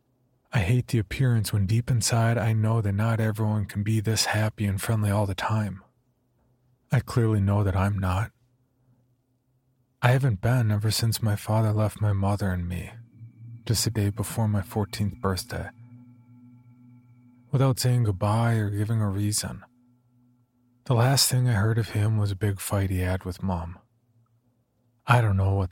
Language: English